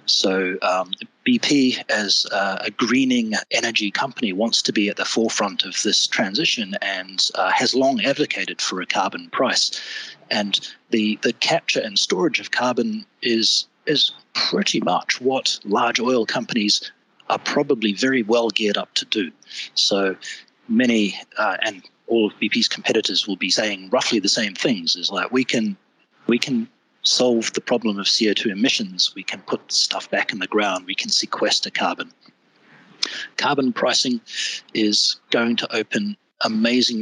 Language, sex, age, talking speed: English, male, 30-49, 155 wpm